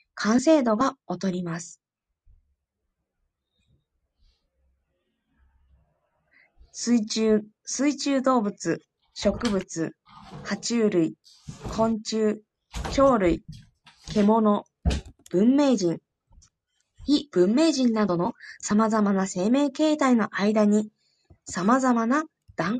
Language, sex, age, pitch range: Japanese, female, 20-39, 185-280 Hz